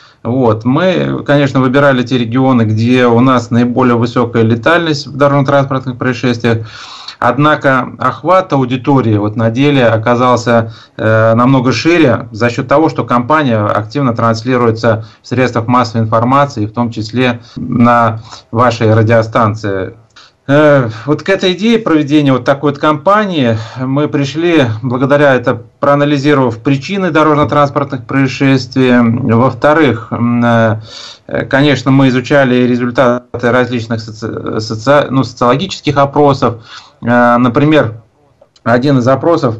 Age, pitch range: 30-49, 115-145 Hz